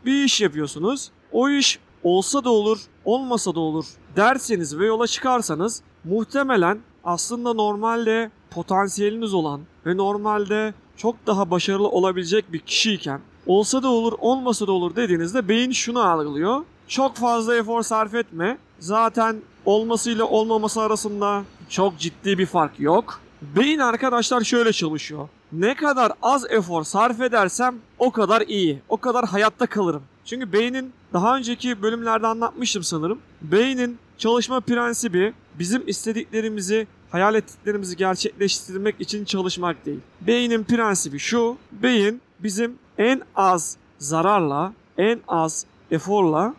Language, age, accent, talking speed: Turkish, 40-59, native, 125 wpm